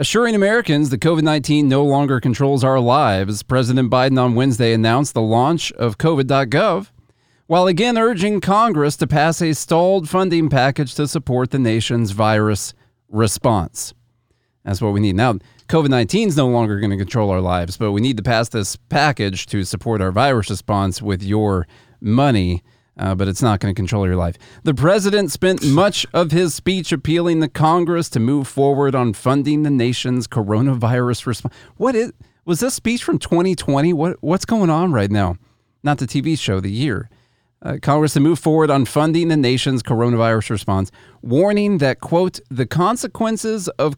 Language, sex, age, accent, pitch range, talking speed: English, male, 30-49, American, 115-165 Hz, 170 wpm